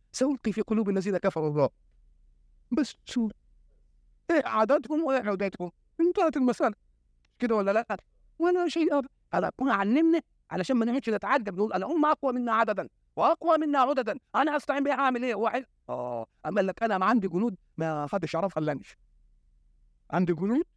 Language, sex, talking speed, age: Arabic, male, 160 wpm, 50-69